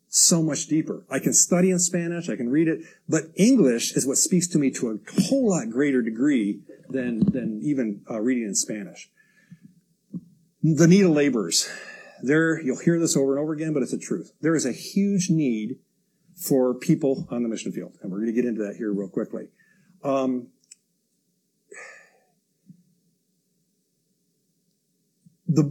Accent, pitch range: American, 135-195 Hz